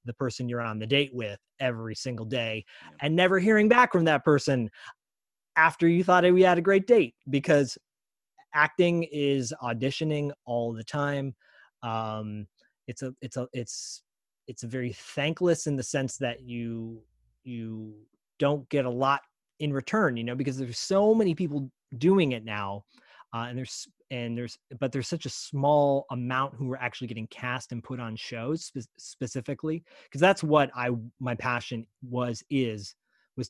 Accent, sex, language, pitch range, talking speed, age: American, male, English, 115-145 Hz, 165 wpm, 30-49